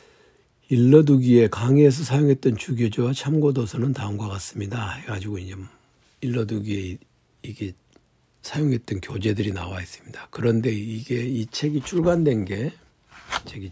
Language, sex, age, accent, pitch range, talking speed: English, male, 60-79, Korean, 105-130 Hz, 100 wpm